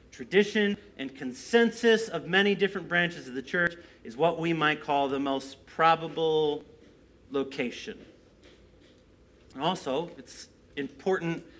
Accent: American